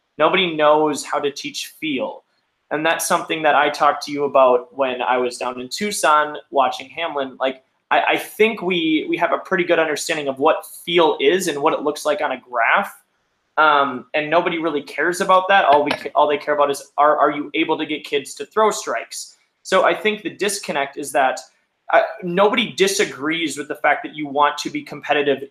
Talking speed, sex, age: 210 wpm, male, 20-39